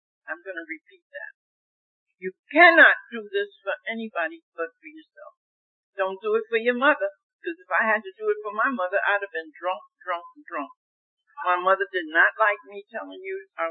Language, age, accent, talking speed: English, 60-79, American, 200 wpm